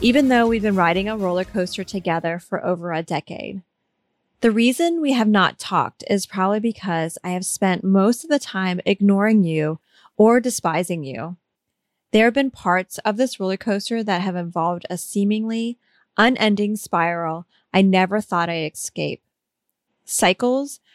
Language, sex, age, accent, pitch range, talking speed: English, female, 30-49, American, 180-225 Hz, 160 wpm